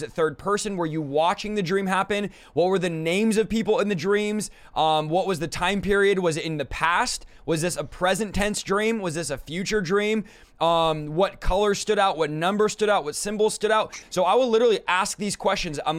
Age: 20-39